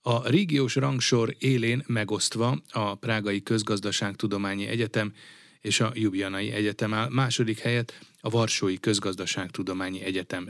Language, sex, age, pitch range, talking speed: Hungarian, male, 30-49, 100-120 Hz, 115 wpm